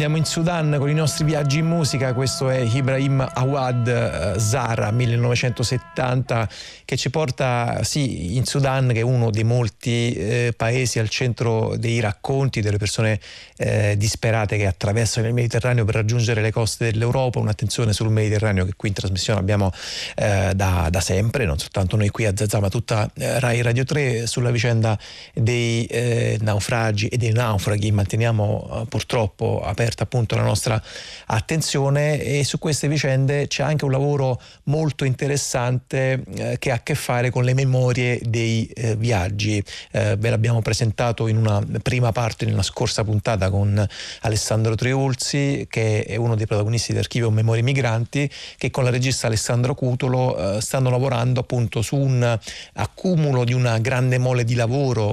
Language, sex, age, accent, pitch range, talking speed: Italian, male, 30-49, native, 110-130 Hz, 160 wpm